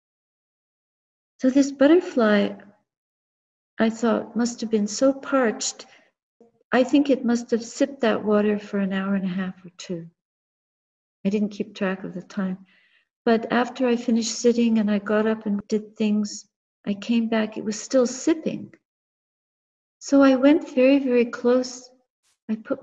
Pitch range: 205-245 Hz